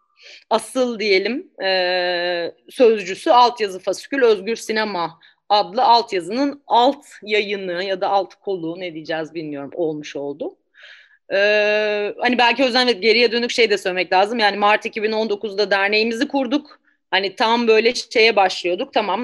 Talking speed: 130 wpm